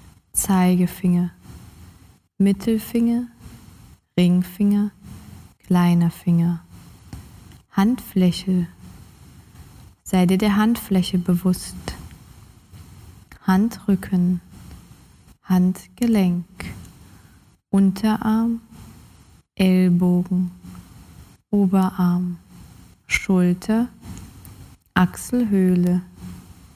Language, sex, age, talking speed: German, female, 20-39, 40 wpm